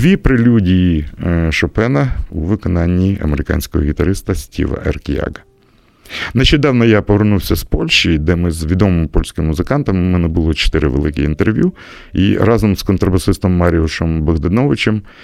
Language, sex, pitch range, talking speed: Russian, male, 85-105 Hz, 125 wpm